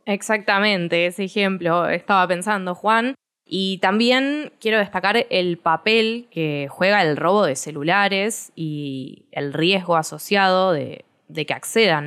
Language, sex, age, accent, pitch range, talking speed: Spanish, female, 20-39, Argentinian, 155-200 Hz, 130 wpm